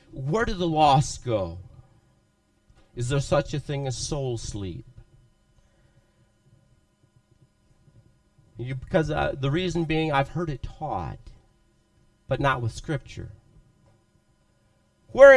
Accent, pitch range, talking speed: American, 115-190 Hz, 110 wpm